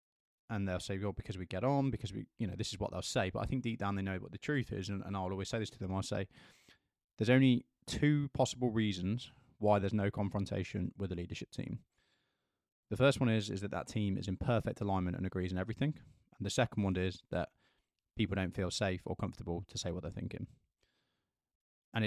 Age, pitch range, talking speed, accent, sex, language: 20-39, 95-115 Hz, 230 wpm, British, male, English